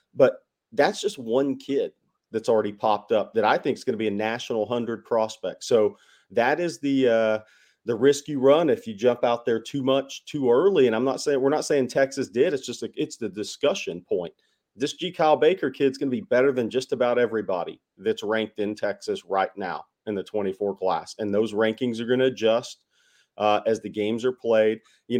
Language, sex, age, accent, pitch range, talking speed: English, male, 40-59, American, 110-140 Hz, 215 wpm